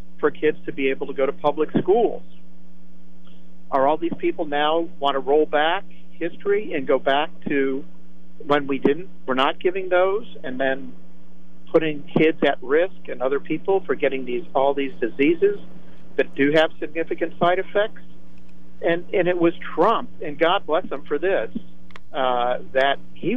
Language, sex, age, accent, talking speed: English, male, 50-69, American, 170 wpm